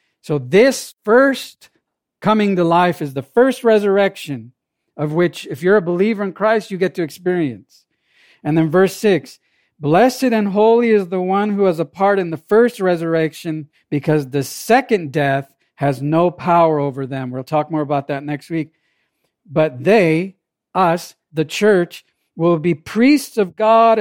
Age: 50-69